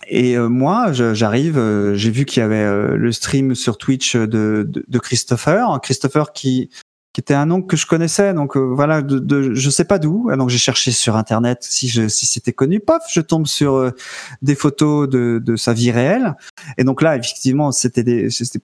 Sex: male